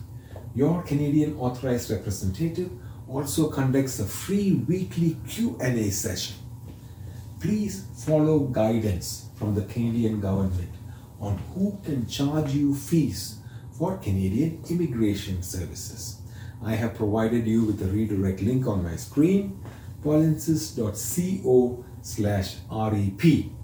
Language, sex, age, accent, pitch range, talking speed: English, male, 40-59, Indian, 105-130 Hz, 105 wpm